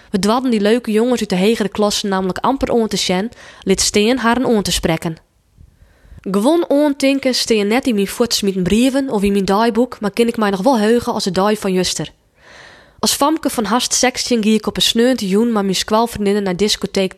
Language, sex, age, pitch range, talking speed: Dutch, female, 20-39, 195-245 Hz, 215 wpm